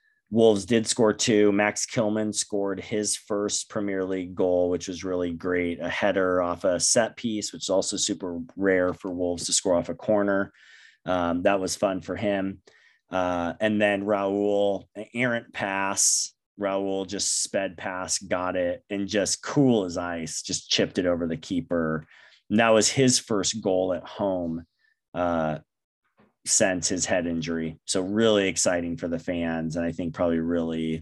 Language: English